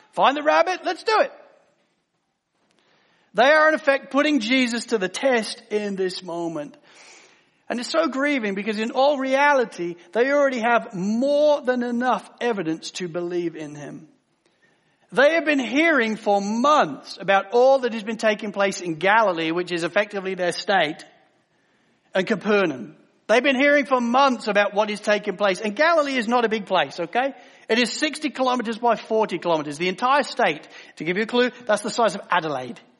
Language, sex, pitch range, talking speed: English, male, 195-285 Hz, 175 wpm